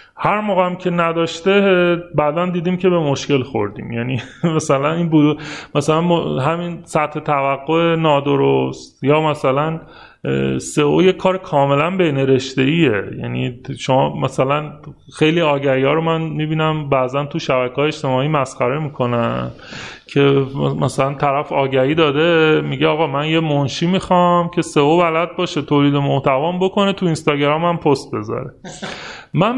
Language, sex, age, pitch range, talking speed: Persian, male, 30-49, 135-180 Hz, 125 wpm